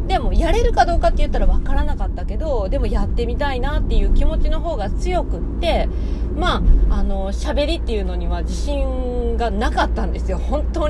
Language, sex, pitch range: Japanese, female, 200-320 Hz